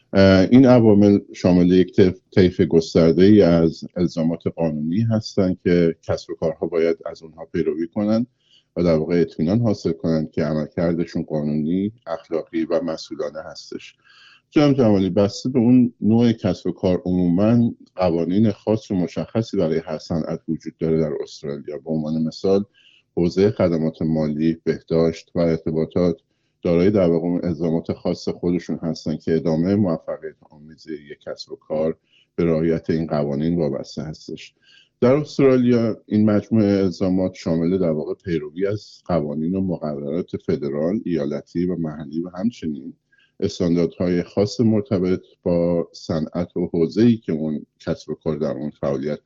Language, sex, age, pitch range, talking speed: Persian, male, 50-69, 80-105 Hz, 140 wpm